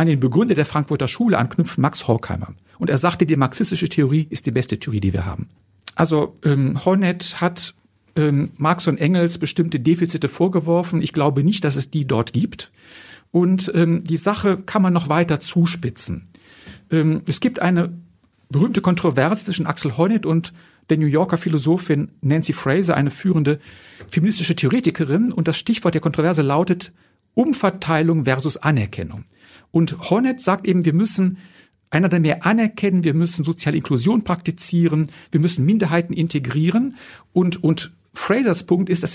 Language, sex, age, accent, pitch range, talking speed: German, male, 50-69, German, 150-185 Hz, 160 wpm